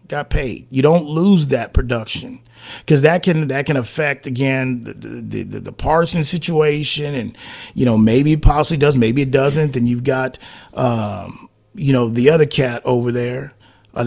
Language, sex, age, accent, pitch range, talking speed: English, male, 30-49, American, 120-160 Hz, 175 wpm